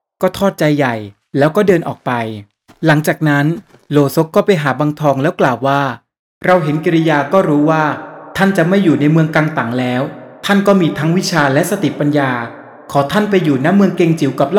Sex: male